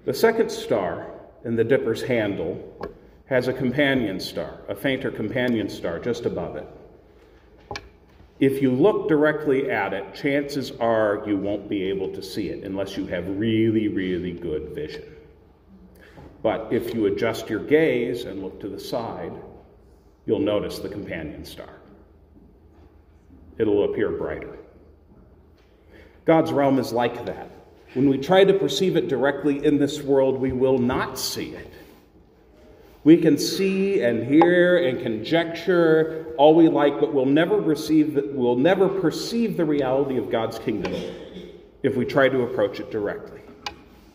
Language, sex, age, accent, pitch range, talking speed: English, male, 40-59, American, 110-175 Hz, 150 wpm